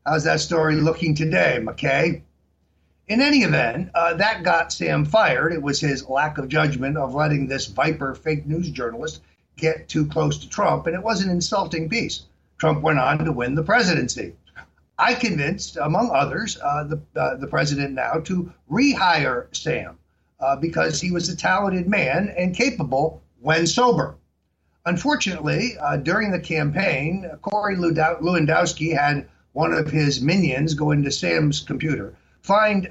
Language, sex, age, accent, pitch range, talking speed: English, male, 50-69, American, 140-175 Hz, 155 wpm